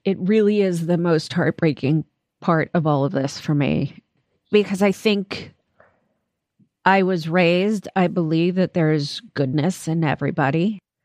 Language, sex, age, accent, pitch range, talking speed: English, female, 30-49, American, 170-210 Hz, 140 wpm